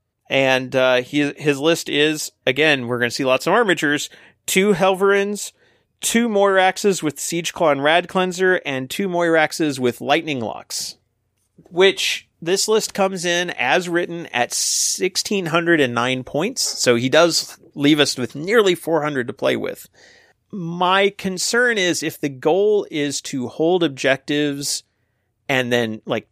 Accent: American